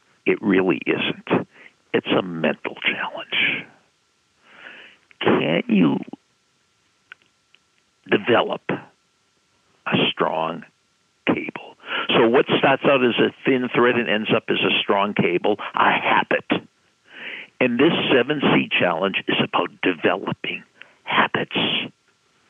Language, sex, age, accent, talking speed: English, male, 60-79, American, 100 wpm